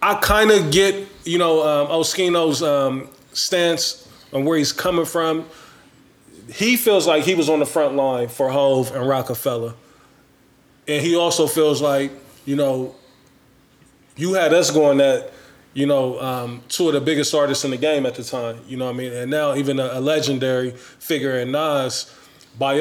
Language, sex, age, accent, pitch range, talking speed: English, male, 20-39, American, 135-160 Hz, 180 wpm